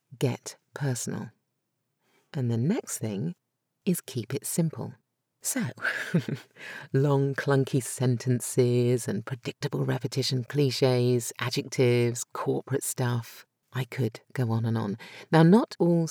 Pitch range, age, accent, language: 120-160 Hz, 40-59, British, English